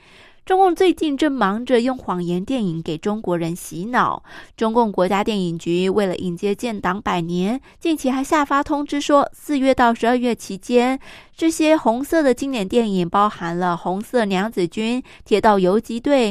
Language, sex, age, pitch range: Chinese, female, 20-39, 190-275 Hz